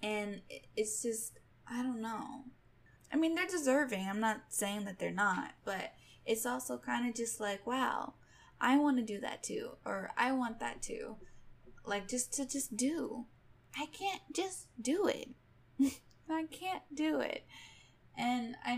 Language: English